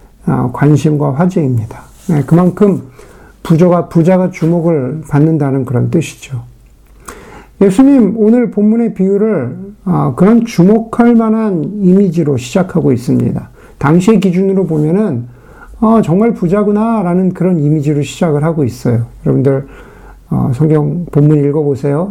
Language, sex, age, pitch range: Korean, male, 50-69, 145-195 Hz